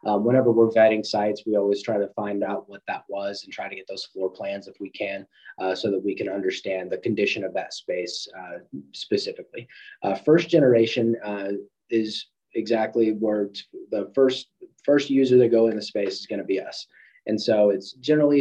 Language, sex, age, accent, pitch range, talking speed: English, male, 20-39, American, 105-130 Hz, 200 wpm